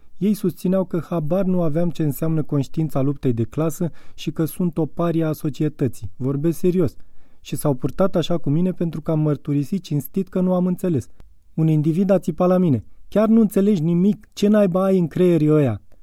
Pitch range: 130-175 Hz